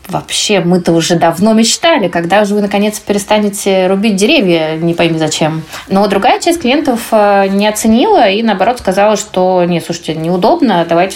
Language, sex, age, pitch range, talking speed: Russian, female, 20-39, 175-210 Hz, 160 wpm